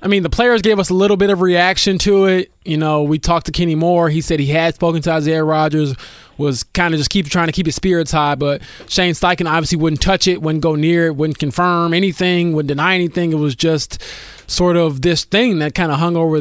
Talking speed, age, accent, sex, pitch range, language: 250 wpm, 20-39, American, male, 155-190 Hz, English